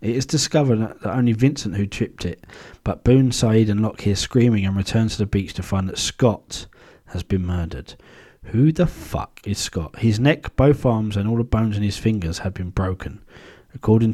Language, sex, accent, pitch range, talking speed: English, male, British, 95-125 Hz, 205 wpm